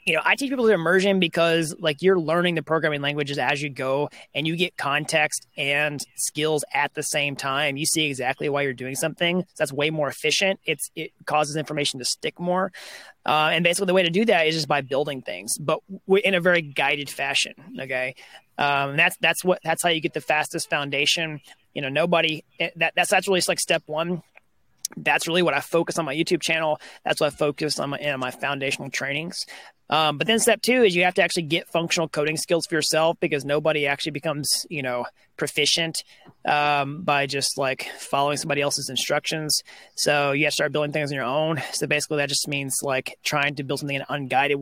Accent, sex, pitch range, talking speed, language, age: American, male, 140-170 Hz, 215 wpm, English, 30-49